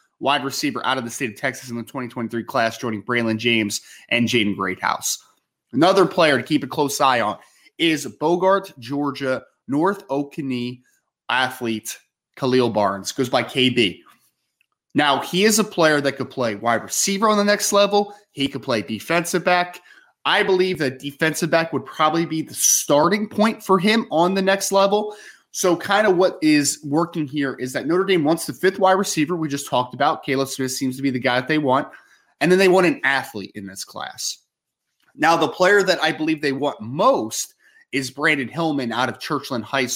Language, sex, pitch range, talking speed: English, male, 125-170 Hz, 190 wpm